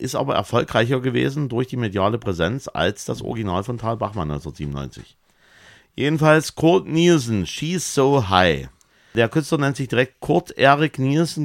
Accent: German